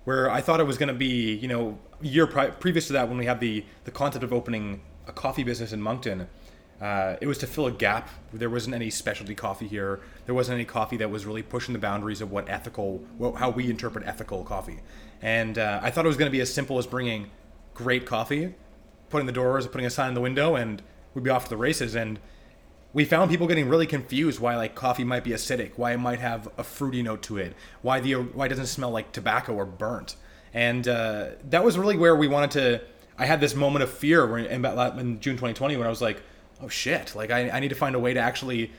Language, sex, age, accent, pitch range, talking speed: English, male, 20-39, American, 110-135 Hz, 245 wpm